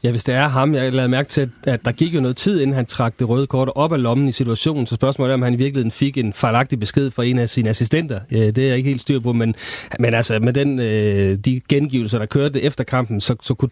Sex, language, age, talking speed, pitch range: male, Danish, 30-49, 275 wpm, 115-135 Hz